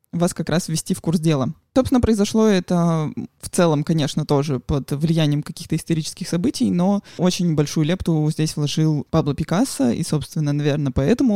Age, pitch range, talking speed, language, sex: 20-39, 155-190 Hz, 165 wpm, Russian, male